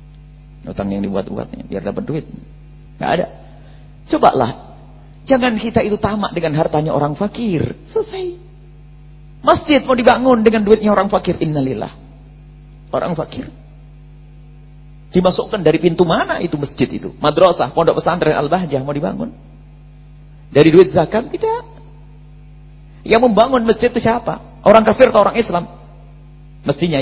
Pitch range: 150-245 Hz